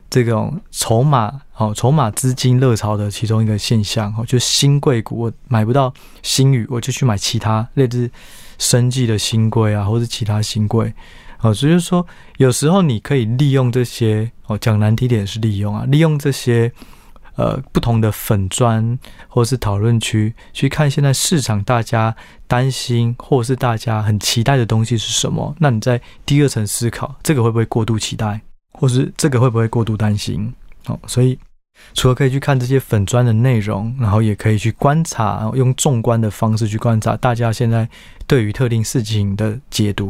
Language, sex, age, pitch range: Chinese, male, 20-39, 110-130 Hz